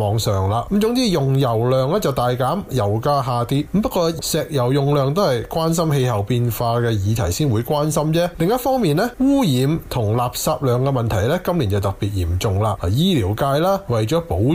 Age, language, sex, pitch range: 20-39, Chinese, male, 115-160 Hz